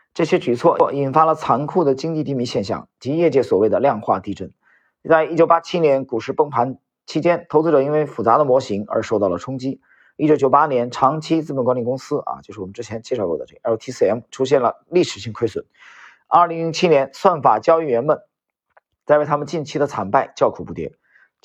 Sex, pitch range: male, 135-165 Hz